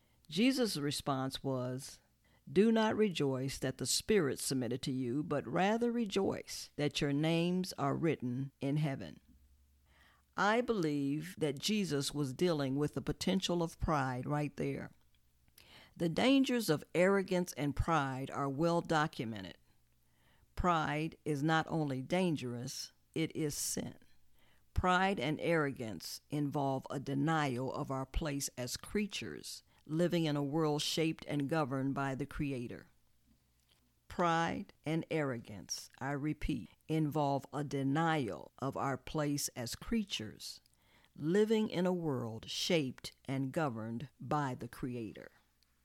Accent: American